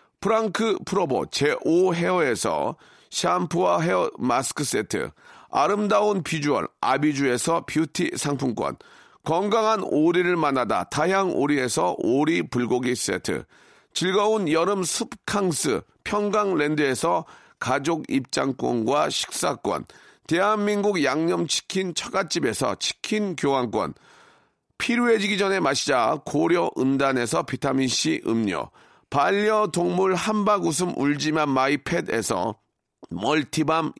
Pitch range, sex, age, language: 145-205 Hz, male, 40-59, Korean